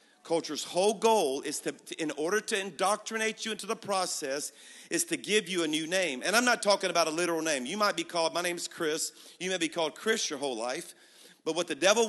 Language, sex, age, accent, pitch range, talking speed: English, male, 50-69, American, 165-215 Hz, 240 wpm